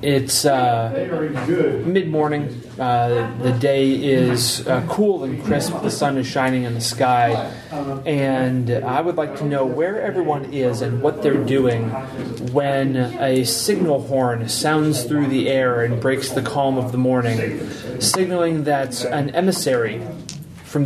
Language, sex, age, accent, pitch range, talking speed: English, male, 30-49, American, 125-150 Hz, 150 wpm